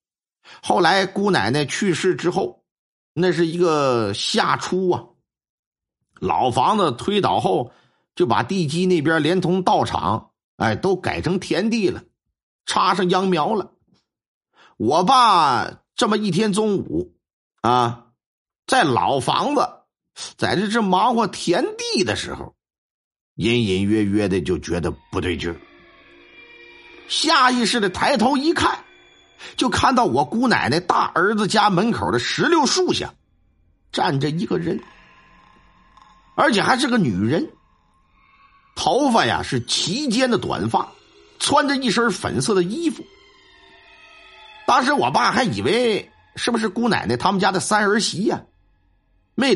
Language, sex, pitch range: Chinese, male, 150-235 Hz